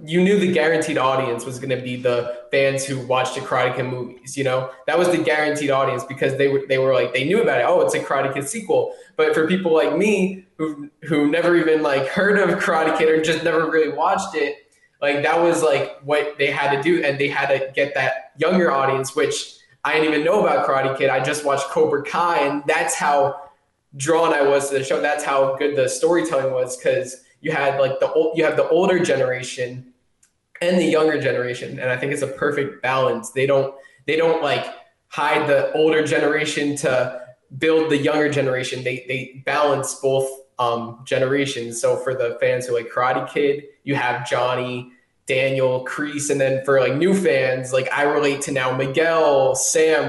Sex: male